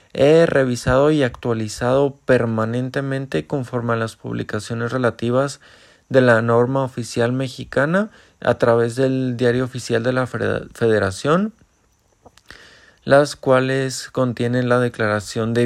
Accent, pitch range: Mexican, 120-140 Hz